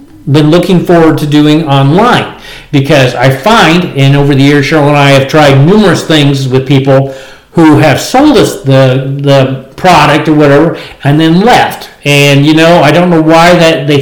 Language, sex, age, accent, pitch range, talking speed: English, male, 50-69, American, 140-175 Hz, 185 wpm